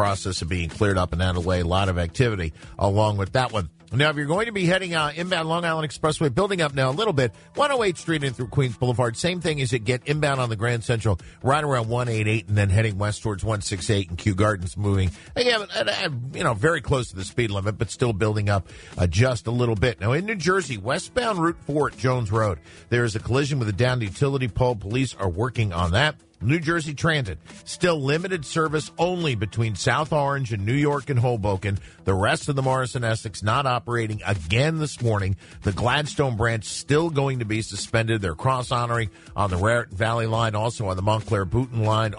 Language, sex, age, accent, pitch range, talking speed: English, male, 50-69, American, 100-145 Hz, 220 wpm